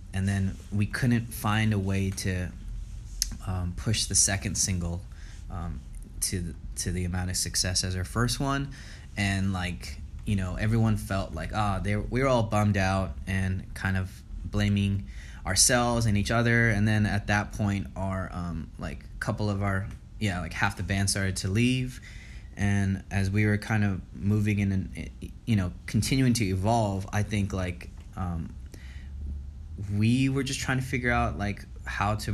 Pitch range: 90-105 Hz